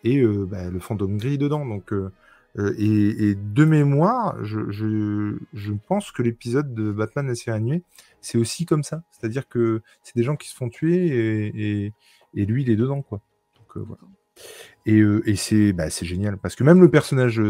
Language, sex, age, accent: French, male, 20-39, French